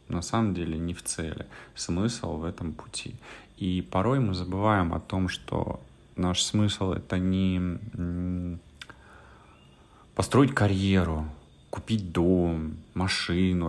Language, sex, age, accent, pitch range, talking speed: Russian, male, 30-49, native, 80-95 Hz, 120 wpm